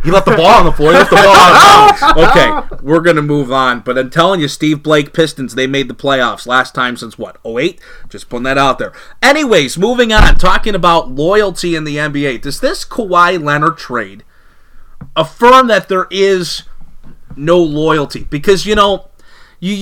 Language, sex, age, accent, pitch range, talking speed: English, male, 30-49, American, 135-180 Hz, 195 wpm